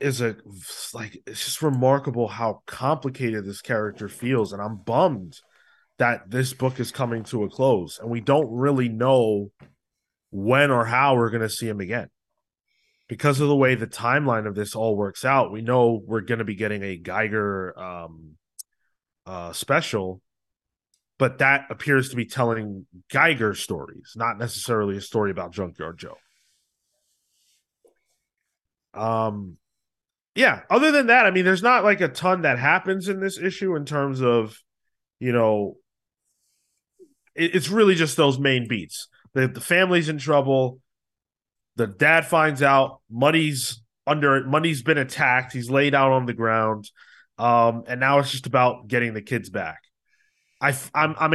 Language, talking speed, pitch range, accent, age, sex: English, 160 wpm, 110-140 Hz, American, 20-39, male